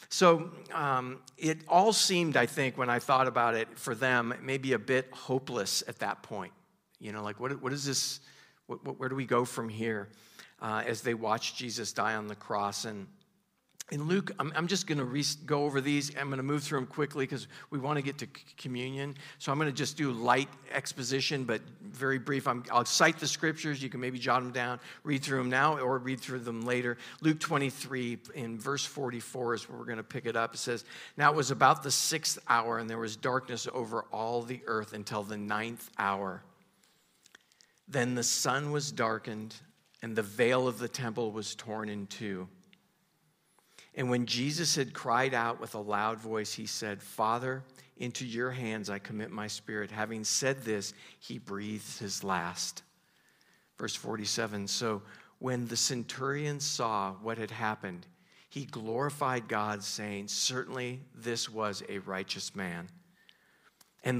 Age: 50-69